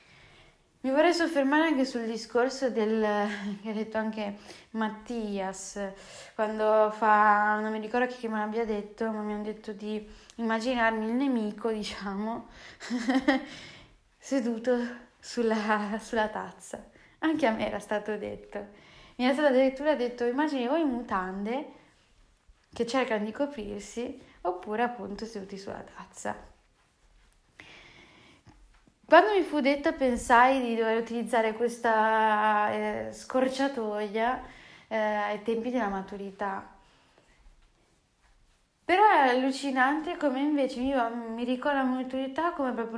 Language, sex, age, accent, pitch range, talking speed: Italian, female, 10-29, native, 215-260 Hz, 120 wpm